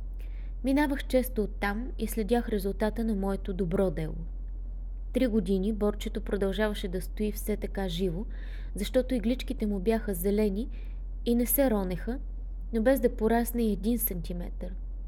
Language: Bulgarian